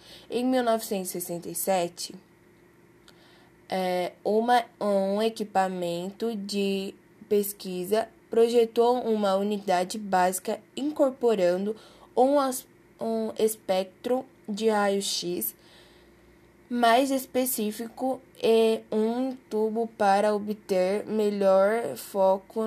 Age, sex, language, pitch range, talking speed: 10-29, female, Portuguese, 190-230 Hz, 65 wpm